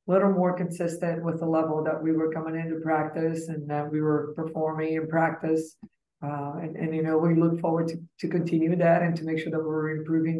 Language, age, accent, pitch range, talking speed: English, 20-39, American, 160-170 Hz, 220 wpm